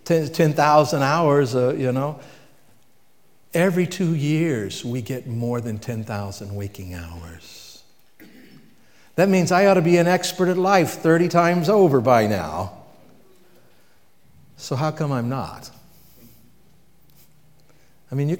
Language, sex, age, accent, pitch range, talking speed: English, male, 60-79, American, 120-170 Hz, 125 wpm